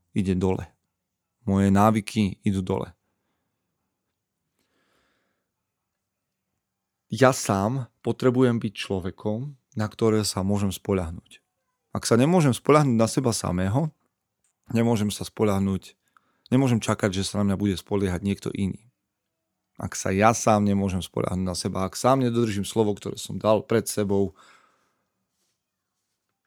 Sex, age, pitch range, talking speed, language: male, 30-49, 100-120 Hz, 120 wpm, Slovak